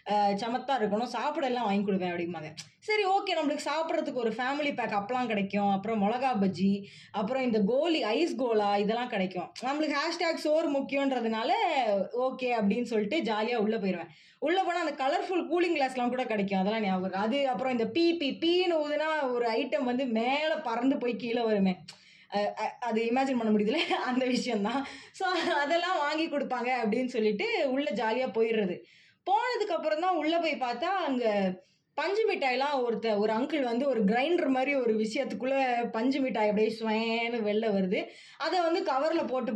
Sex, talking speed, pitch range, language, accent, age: female, 155 wpm, 220-305 Hz, Tamil, native, 20-39